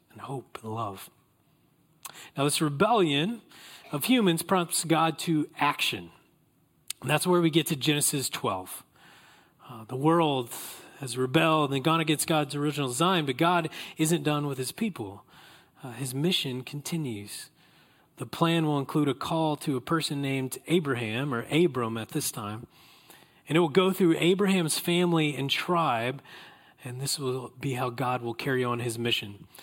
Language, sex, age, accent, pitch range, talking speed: English, male, 30-49, American, 130-165 Hz, 160 wpm